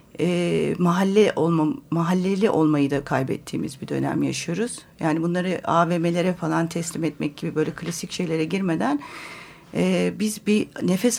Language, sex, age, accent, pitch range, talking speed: Turkish, female, 40-59, native, 165-225 Hz, 135 wpm